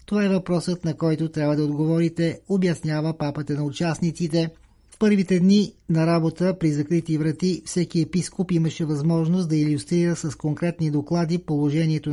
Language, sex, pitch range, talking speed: Bulgarian, male, 155-175 Hz, 150 wpm